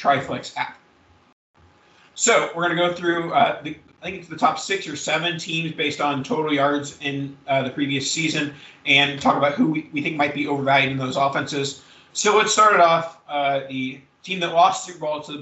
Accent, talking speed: American, 210 wpm